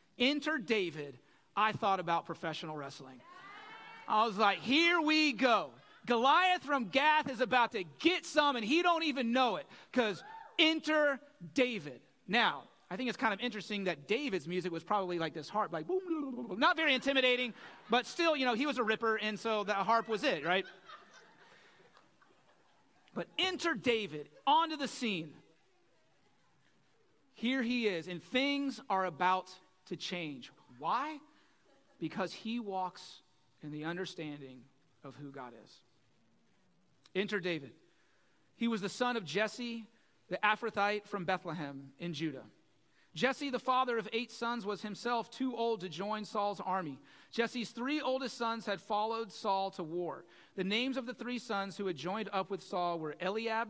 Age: 30-49